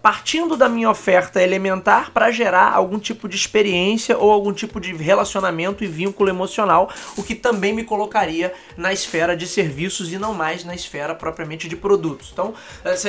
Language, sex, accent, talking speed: Portuguese, male, Brazilian, 175 wpm